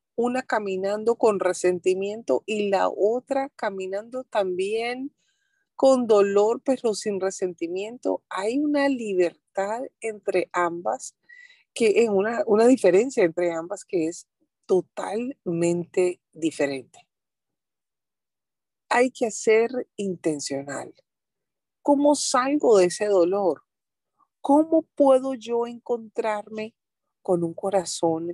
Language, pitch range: English, 170-240 Hz